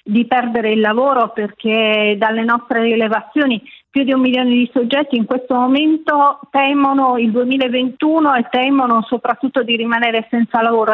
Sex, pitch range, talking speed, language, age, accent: female, 225-265 Hz, 150 wpm, Italian, 40-59, native